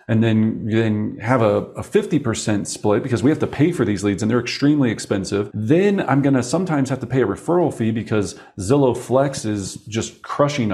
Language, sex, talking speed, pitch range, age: English, male, 200 wpm, 110-165 Hz, 40-59